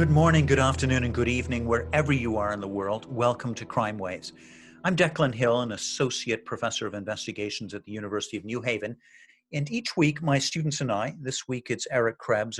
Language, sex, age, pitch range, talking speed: English, male, 50-69, 115-145 Hz, 205 wpm